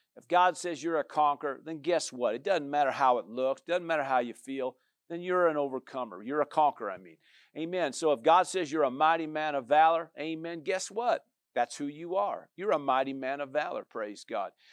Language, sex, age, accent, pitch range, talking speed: English, male, 50-69, American, 145-200 Hz, 225 wpm